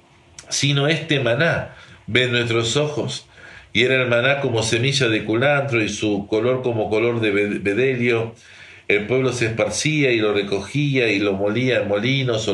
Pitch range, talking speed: 105-130 Hz, 165 wpm